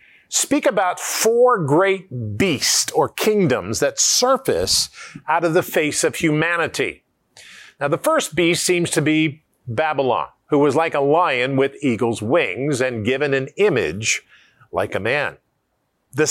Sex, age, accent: male, 50-69, American